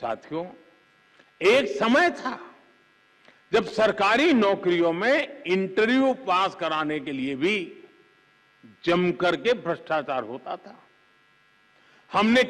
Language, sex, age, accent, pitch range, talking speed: Hindi, male, 50-69, native, 145-225 Hz, 95 wpm